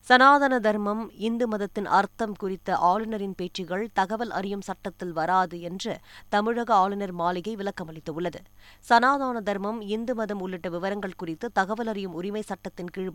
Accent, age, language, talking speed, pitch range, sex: native, 20-39, Tamil, 130 wpm, 180-220 Hz, female